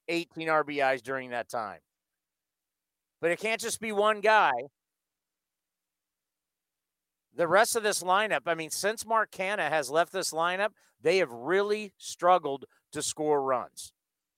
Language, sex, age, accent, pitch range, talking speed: English, male, 50-69, American, 135-195 Hz, 140 wpm